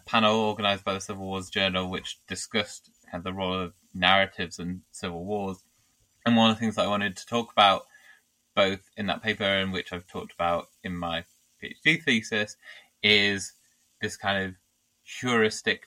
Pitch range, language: 85-95 Hz, English